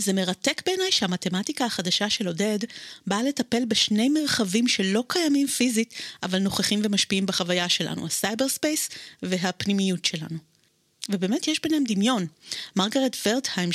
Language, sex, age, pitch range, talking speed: Hebrew, female, 30-49, 185-250 Hz, 120 wpm